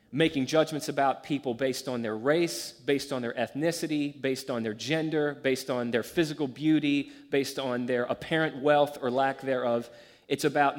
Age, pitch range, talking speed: 30-49, 130-160 Hz, 170 wpm